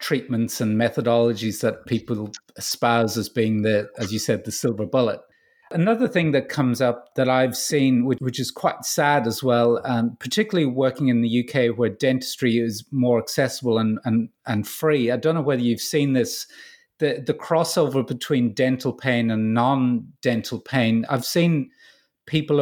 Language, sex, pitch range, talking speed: English, male, 115-145 Hz, 170 wpm